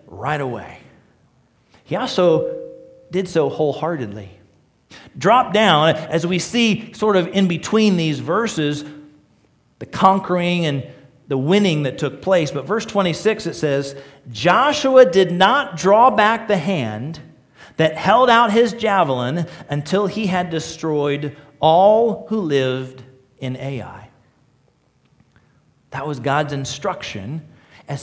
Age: 40-59